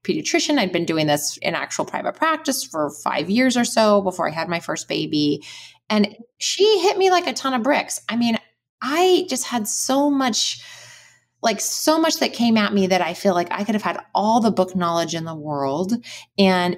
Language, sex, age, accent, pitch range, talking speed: English, female, 20-39, American, 155-210 Hz, 210 wpm